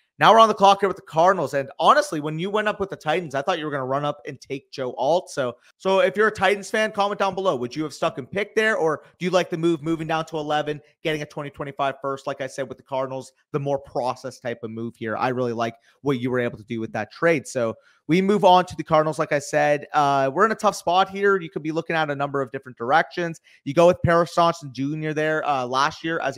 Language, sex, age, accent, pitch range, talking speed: English, male, 30-49, American, 135-170 Hz, 280 wpm